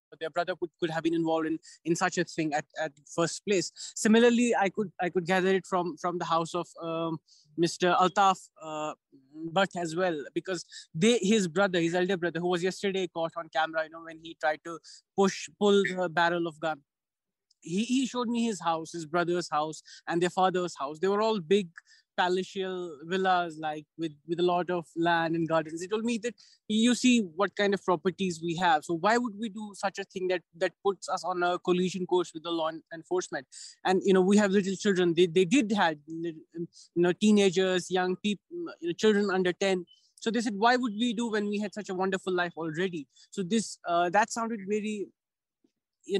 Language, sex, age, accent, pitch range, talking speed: English, male, 20-39, Indian, 170-205 Hz, 215 wpm